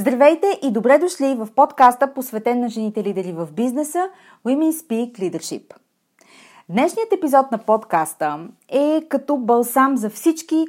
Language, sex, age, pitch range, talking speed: Bulgarian, female, 30-49, 205-285 Hz, 135 wpm